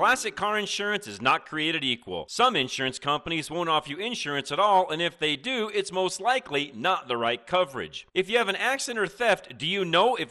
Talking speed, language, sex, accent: 220 wpm, English, male, American